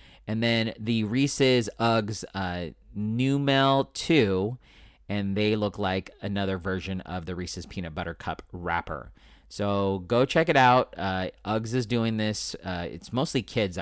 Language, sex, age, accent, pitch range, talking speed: English, male, 40-59, American, 95-120 Hz, 150 wpm